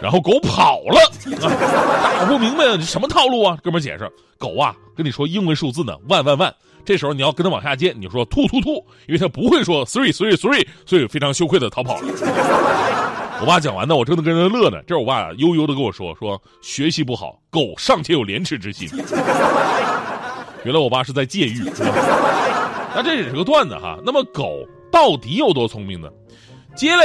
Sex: male